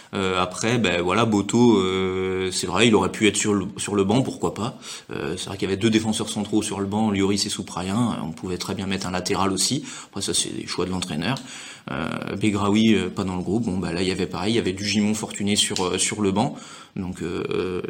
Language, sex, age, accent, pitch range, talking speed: French, male, 30-49, French, 95-110 Hz, 250 wpm